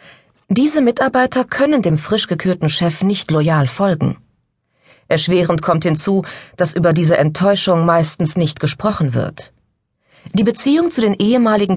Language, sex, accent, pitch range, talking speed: German, female, German, 145-200 Hz, 135 wpm